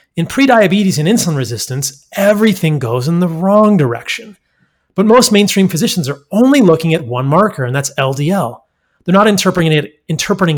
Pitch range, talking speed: 140-195 Hz, 155 wpm